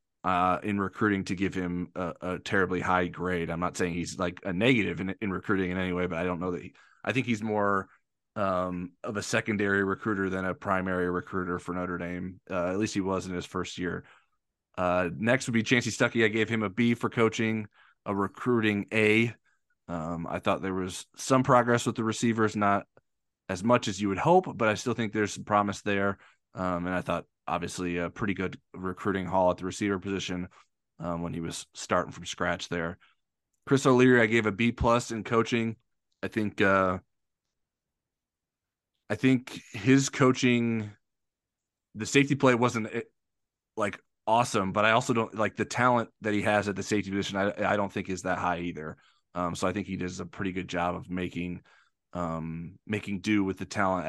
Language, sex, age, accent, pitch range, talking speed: English, male, 20-39, American, 90-110 Hz, 200 wpm